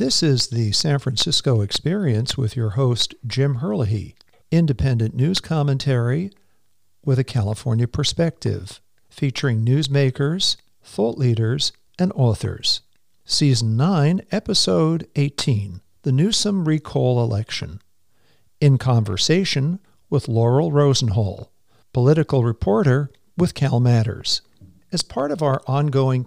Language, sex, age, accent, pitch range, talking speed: English, male, 50-69, American, 120-150 Hz, 105 wpm